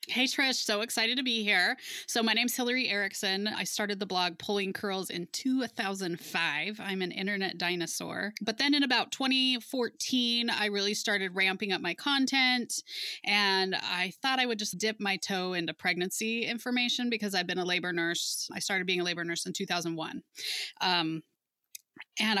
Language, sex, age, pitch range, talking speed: English, female, 20-39, 185-235 Hz, 175 wpm